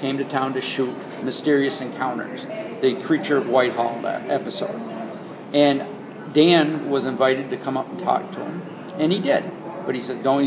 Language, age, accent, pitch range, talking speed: English, 50-69, American, 135-160 Hz, 170 wpm